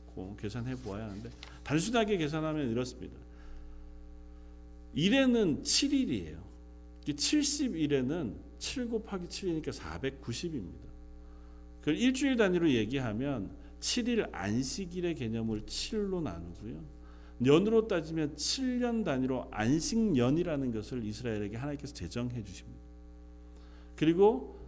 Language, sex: Korean, male